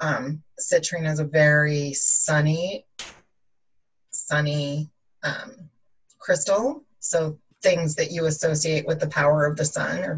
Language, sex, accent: English, female, American